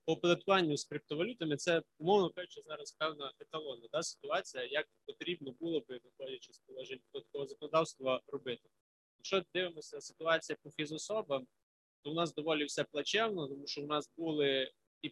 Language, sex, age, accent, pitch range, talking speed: Ukrainian, male, 20-39, native, 140-170 Hz, 150 wpm